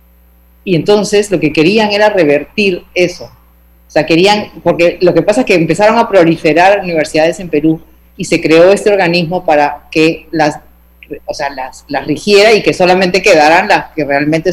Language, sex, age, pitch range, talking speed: Spanish, female, 40-59, 155-240 Hz, 180 wpm